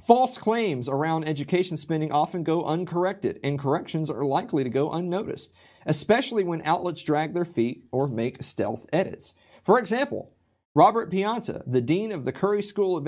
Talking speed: 165 wpm